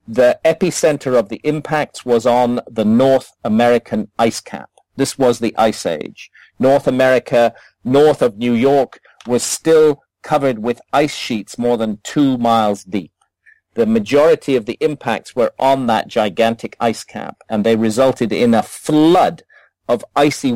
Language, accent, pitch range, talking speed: English, British, 115-140 Hz, 155 wpm